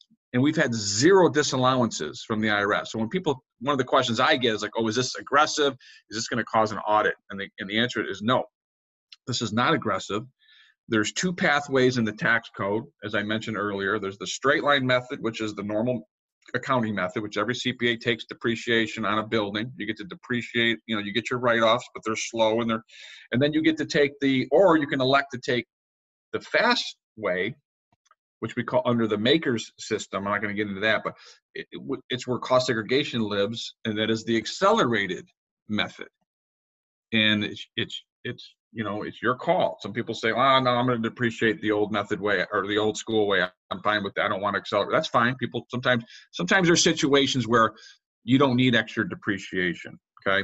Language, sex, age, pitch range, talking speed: English, male, 40-59, 105-125 Hz, 215 wpm